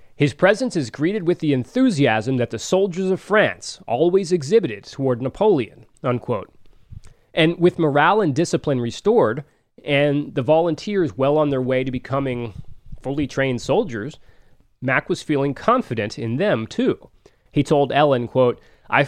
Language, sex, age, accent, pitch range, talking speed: English, male, 30-49, American, 120-160 Hz, 150 wpm